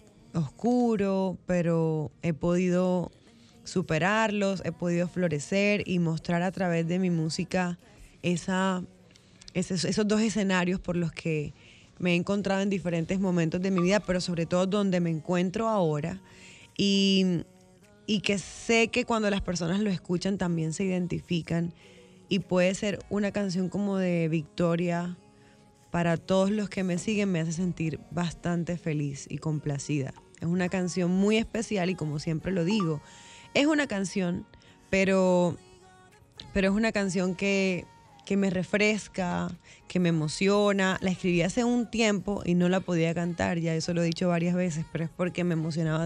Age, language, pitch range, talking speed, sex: 10-29, Spanish, 165-195 Hz, 155 wpm, female